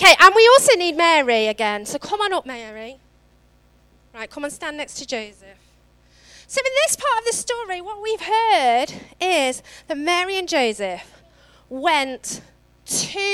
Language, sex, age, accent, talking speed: English, female, 30-49, British, 160 wpm